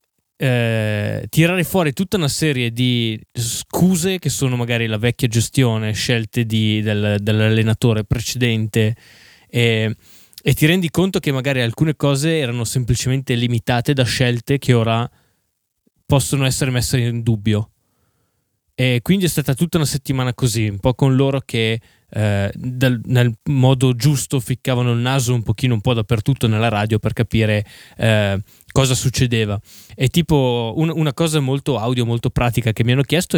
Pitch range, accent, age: 110-140 Hz, native, 10-29